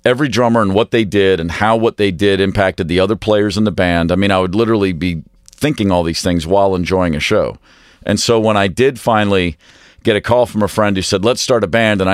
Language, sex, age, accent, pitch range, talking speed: English, male, 50-69, American, 90-110 Hz, 250 wpm